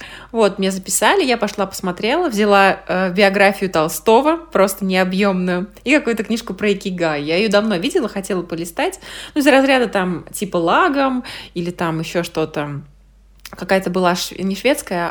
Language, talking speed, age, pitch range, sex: Russian, 150 wpm, 20-39, 170-220 Hz, female